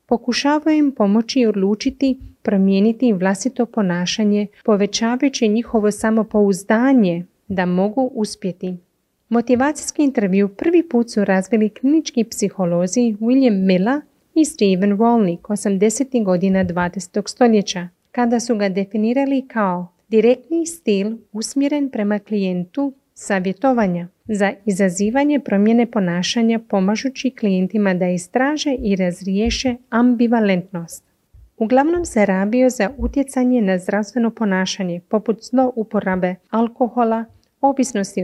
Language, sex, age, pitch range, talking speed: Croatian, female, 30-49, 195-255 Hz, 100 wpm